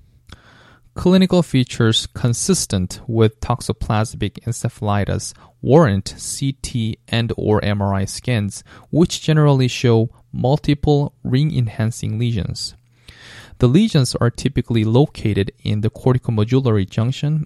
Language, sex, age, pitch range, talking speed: English, male, 20-39, 105-130 Hz, 95 wpm